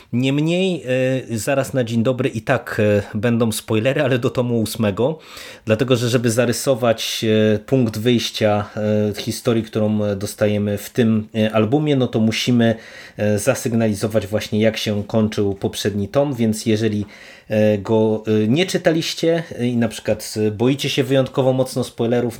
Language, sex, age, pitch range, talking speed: Polish, male, 30-49, 110-130 Hz, 130 wpm